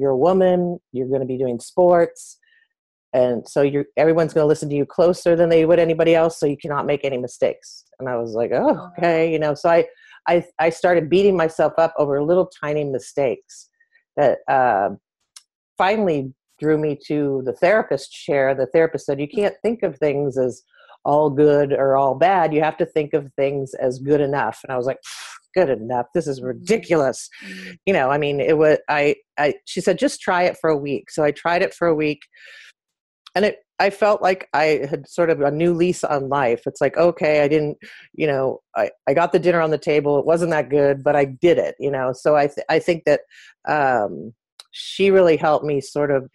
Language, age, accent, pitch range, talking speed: English, 40-59, American, 140-175 Hz, 215 wpm